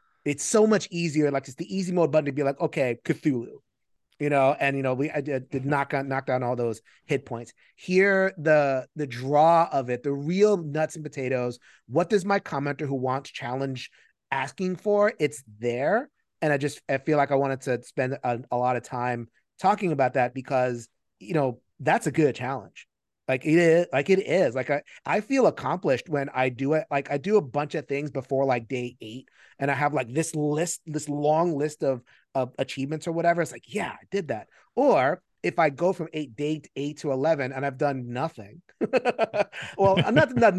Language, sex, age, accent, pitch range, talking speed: English, male, 30-49, American, 130-170 Hz, 210 wpm